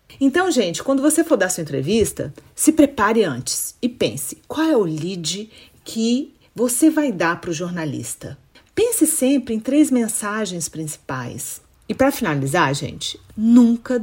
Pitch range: 155-250 Hz